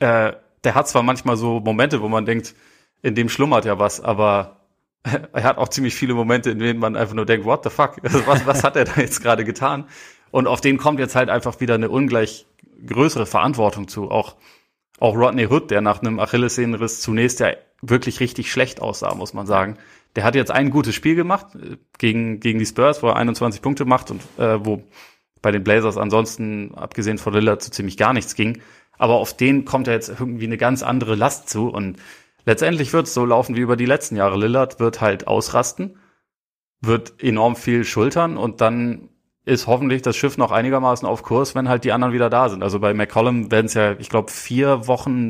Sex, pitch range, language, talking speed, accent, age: male, 110-130 Hz, German, 210 wpm, German, 30-49